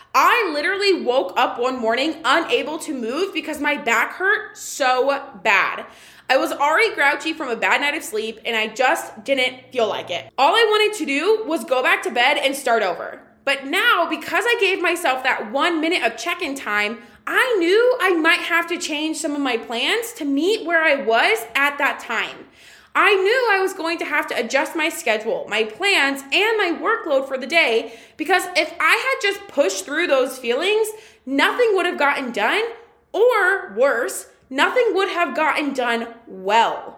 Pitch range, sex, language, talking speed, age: 250-380 Hz, female, English, 190 wpm, 20-39